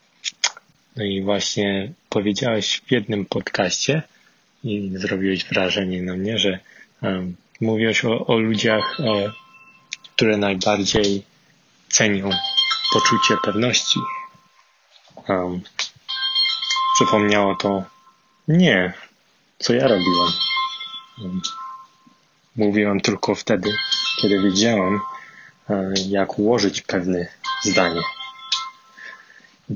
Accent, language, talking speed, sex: Polish, English, 85 wpm, male